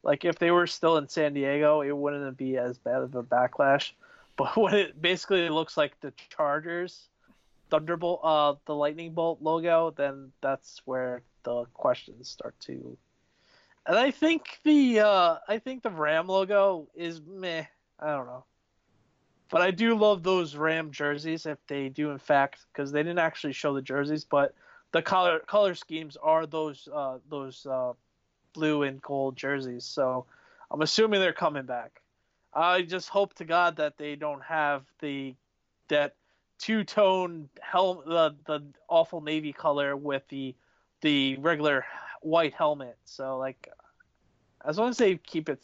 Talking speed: 160 wpm